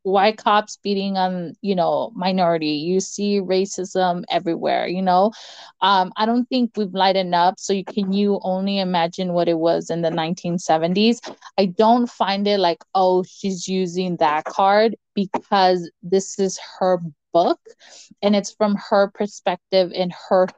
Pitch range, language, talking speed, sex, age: 175-205 Hz, English, 155 wpm, female, 20-39